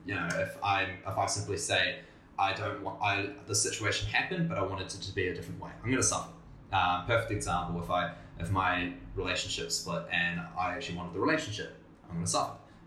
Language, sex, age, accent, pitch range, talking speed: English, male, 10-29, Australian, 85-100 Hz, 225 wpm